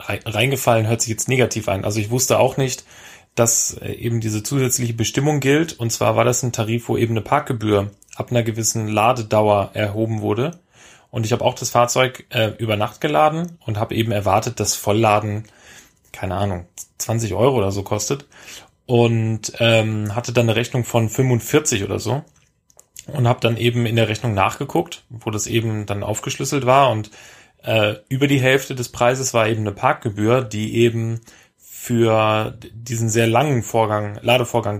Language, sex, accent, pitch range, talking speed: German, male, German, 110-130 Hz, 170 wpm